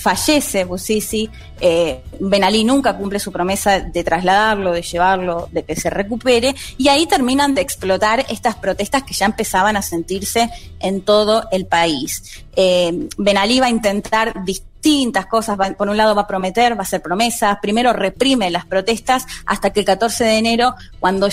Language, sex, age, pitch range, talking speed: Spanish, female, 20-39, 190-250 Hz, 170 wpm